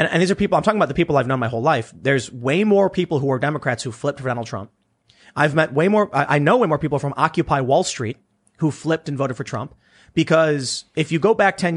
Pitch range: 125-165 Hz